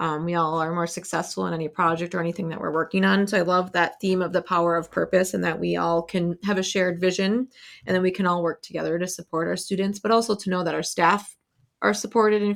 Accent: American